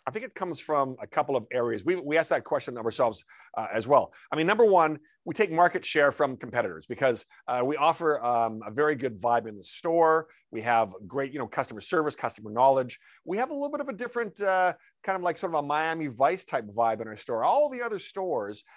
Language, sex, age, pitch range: English, male, 50-69, 120-165 Hz